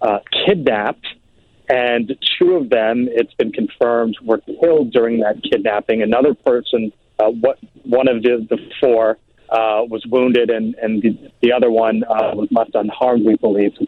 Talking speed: 170 wpm